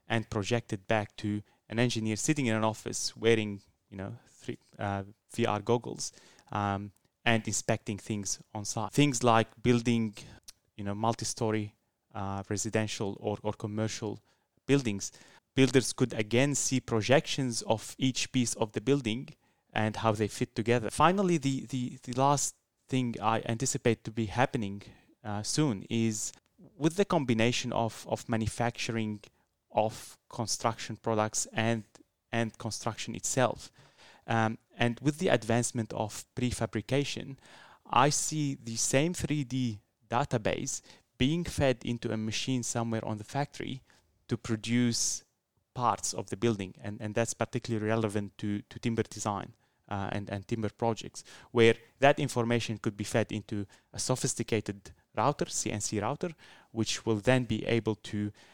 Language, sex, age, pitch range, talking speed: English, male, 30-49, 105-125 Hz, 140 wpm